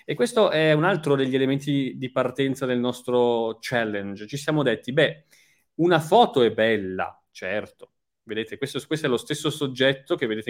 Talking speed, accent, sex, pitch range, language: 170 wpm, native, male, 115-145 Hz, Italian